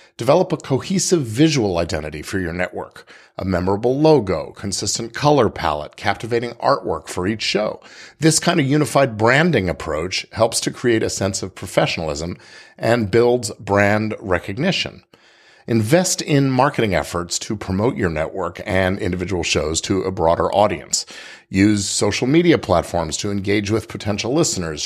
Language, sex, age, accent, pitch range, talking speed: English, male, 50-69, American, 90-120 Hz, 145 wpm